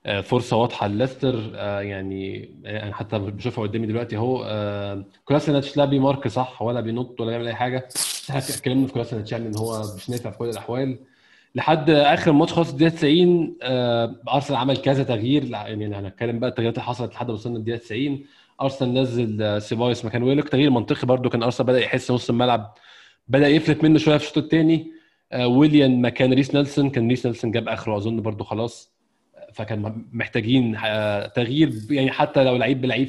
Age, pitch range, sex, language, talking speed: 20-39, 115-140 Hz, male, Arabic, 175 wpm